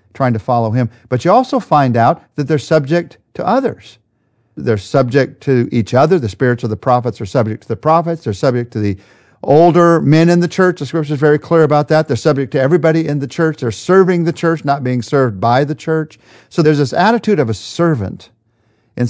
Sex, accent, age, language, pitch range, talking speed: male, American, 50-69, English, 115-160 Hz, 220 wpm